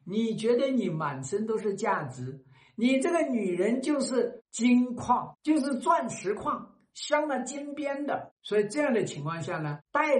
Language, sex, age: Chinese, male, 60-79